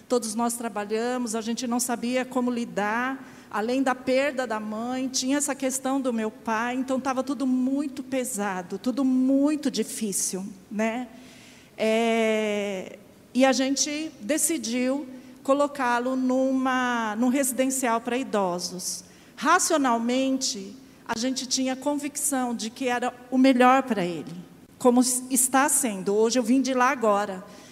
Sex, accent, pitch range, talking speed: female, Brazilian, 230-270 Hz, 130 wpm